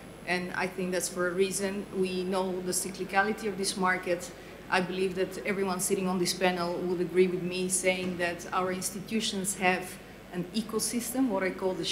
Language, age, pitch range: English, 30-49, 175-195 Hz